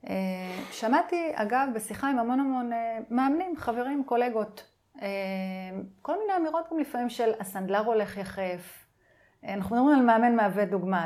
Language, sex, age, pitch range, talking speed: Hebrew, female, 30-49, 200-250 Hz, 150 wpm